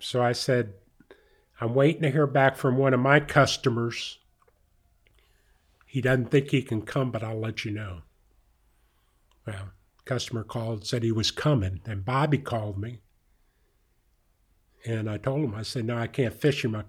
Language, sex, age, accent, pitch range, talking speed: English, male, 50-69, American, 105-135 Hz, 165 wpm